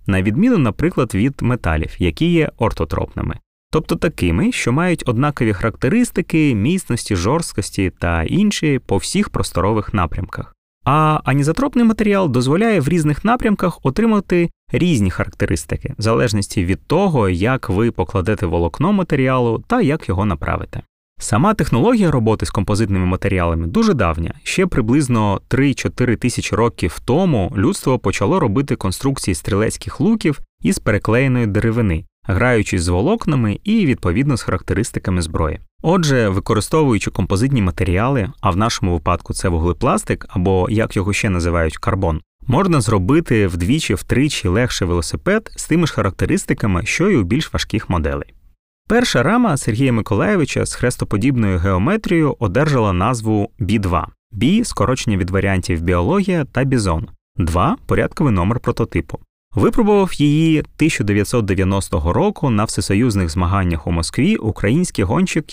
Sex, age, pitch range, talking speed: male, 20-39, 95-145 Hz, 130 wpm